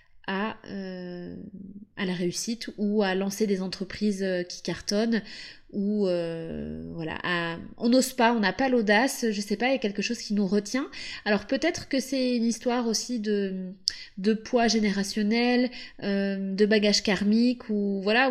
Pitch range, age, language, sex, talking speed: 210-265 Hz, 20-39, French, female, 170 wpm